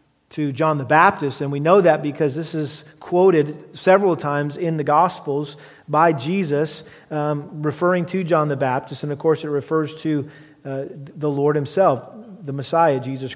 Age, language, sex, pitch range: 40-59, English, male, 150-185 Hz